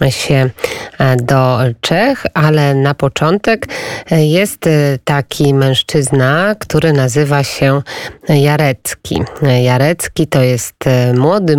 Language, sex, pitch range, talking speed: Polish, female, 135-165 Hz, 90 wpm